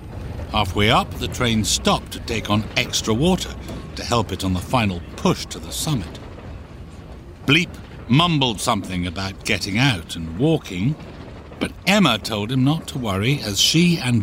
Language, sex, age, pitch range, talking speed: English, male, 60-79, 95-145 Hz, 160 wpm